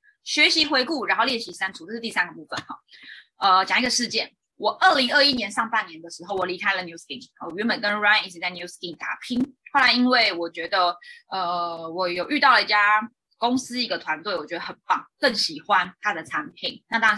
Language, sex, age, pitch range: Chinese, female, 20-39, 200-290 Hz